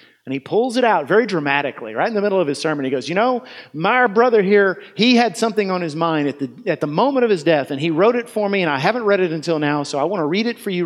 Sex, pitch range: male, 140-190 Hz